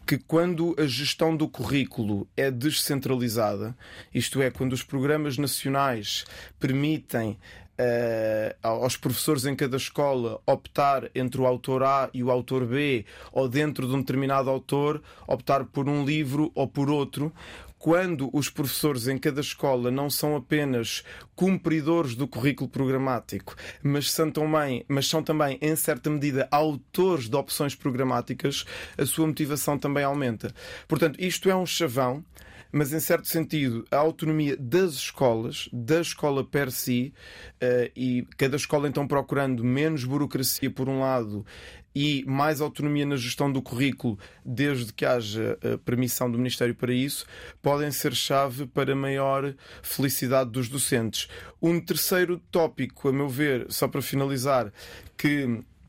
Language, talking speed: Portuguese, 140 wpm